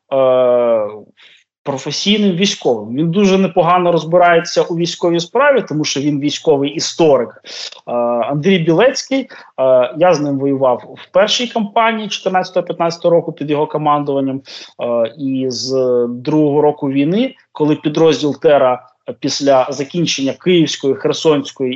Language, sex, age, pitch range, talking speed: Ukrainian, male, 20-39, 135-190 Hz, 110 wpm